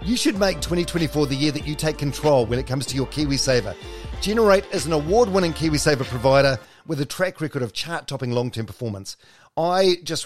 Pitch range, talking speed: 125-165 Hz, 185 wpm